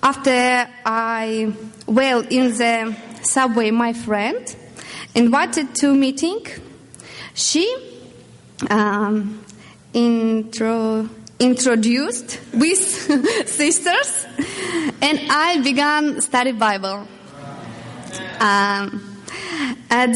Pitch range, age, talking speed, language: 225-290 Hz, 20-39, 70 wpm, English